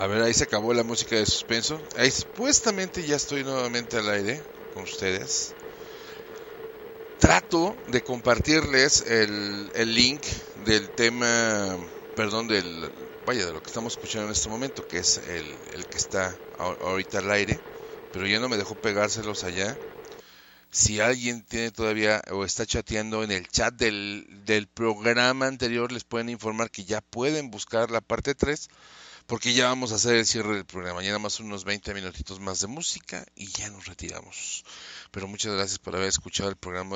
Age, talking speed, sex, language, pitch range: 40-59, 170 wpm, male, Spanish, 100-125 Hz